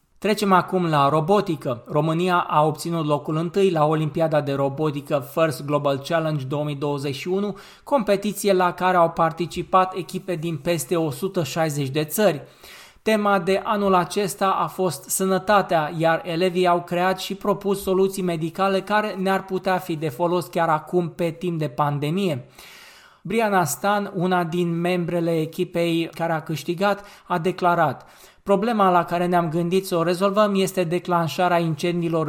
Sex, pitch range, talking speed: male, 160-190 Hz, 145 wpm